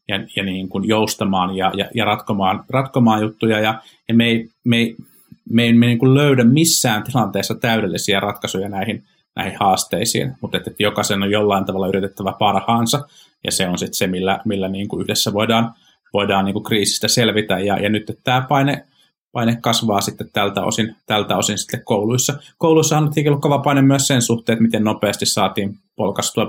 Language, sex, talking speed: Finnish, male, 175 wpm